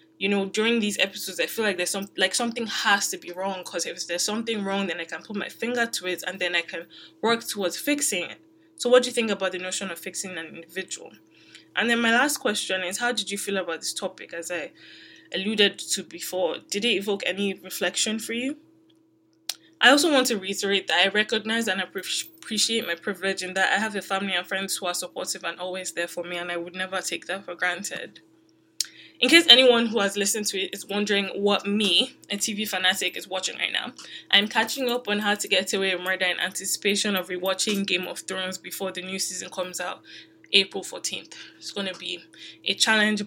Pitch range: 185-220 Hz